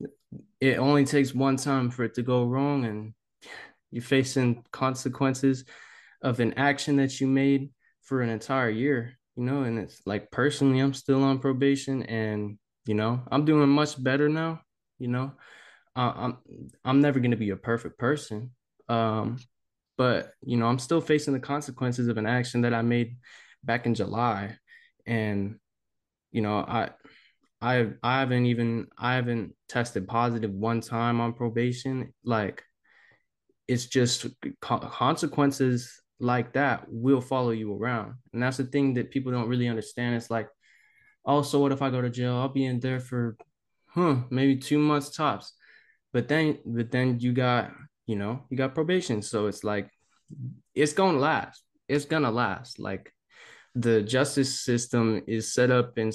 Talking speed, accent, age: 170 wpm, American, 10-29